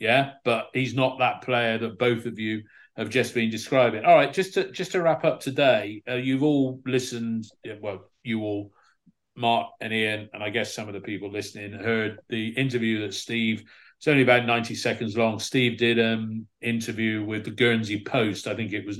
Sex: male